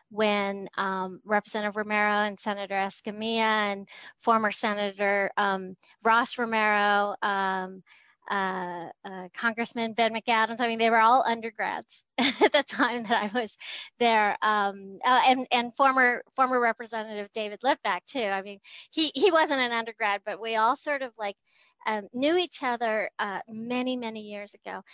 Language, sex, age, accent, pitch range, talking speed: English, female, 30-49, American, 210-250 Hz, 155 wpm